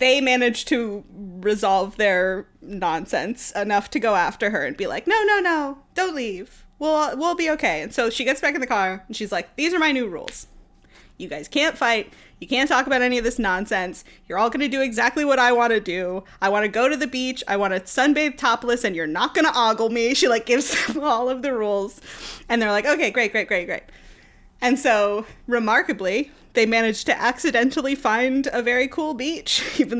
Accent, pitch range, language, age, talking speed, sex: American, 205-280 Hz, English, 20-39, 220 wpm, female